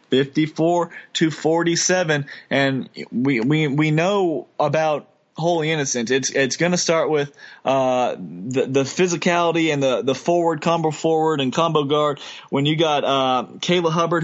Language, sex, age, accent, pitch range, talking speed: English, male, 20-39, American, 135-165 Hz, 155 wpm